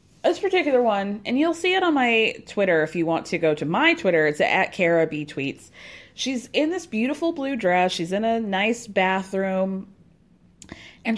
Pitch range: 185-255 Hz